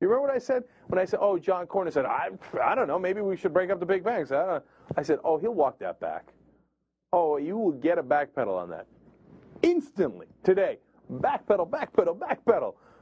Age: 40-59